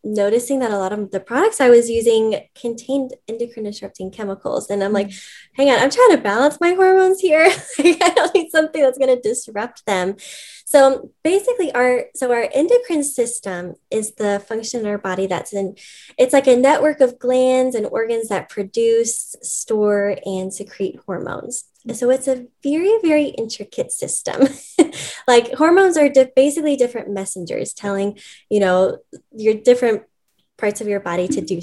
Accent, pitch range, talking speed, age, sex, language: American, 205-280 Hz, 165 wpm, 10-29, female, English